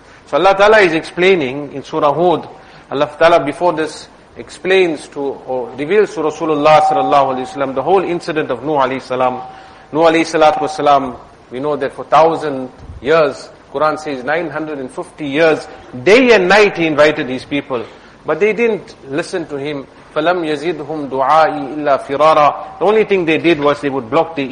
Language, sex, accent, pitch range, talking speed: English, male, Indian, 140-170 Hz, 165 wpm